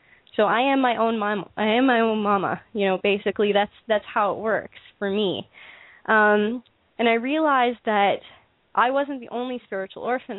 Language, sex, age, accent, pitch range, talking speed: English, female, 10-29, American, 185-230 Hz, 185 wpm